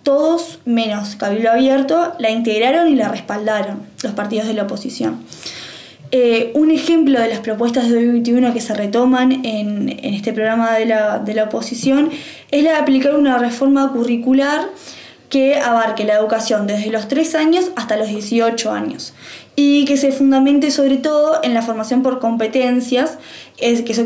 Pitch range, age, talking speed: 220-275 Hz, 20-39, 160 wpm